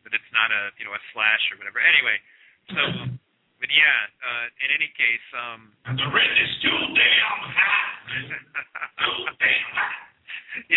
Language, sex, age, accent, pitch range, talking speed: English, male, 40-59, American, 120-155 Hz, 110 wpm